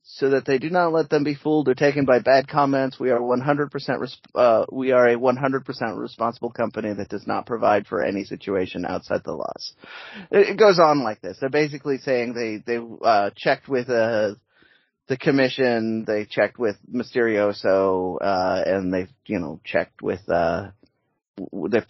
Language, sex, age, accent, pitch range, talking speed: English, male, 30-49, American, 105-135 Hz, 175 wpm